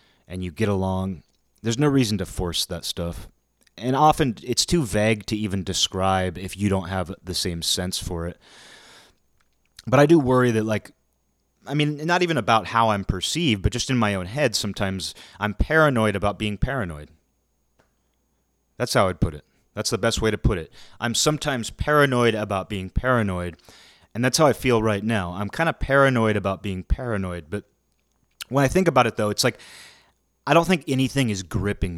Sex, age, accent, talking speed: male, 30-49, American, 190 wpm